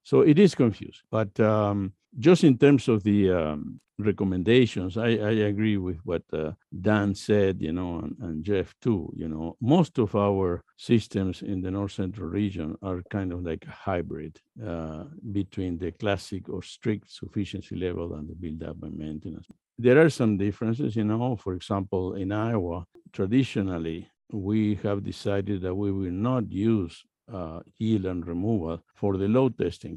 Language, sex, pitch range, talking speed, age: English, male, 90-110 Hz, 170 wpm, 60-79